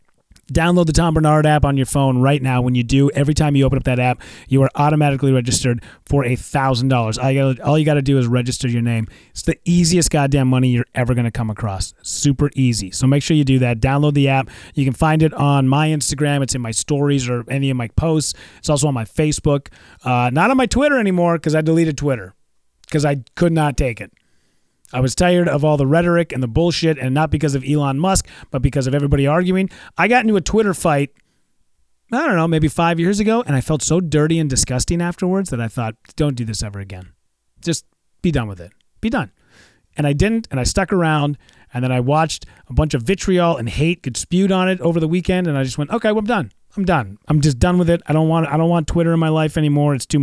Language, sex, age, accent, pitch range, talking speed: English, male, 30-49, American, 130-170 Hz, 245 wpm